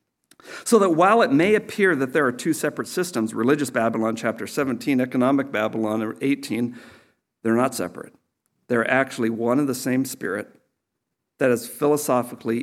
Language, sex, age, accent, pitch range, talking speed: English, male, 50-69, American, 120-140 Hz, 150 wpm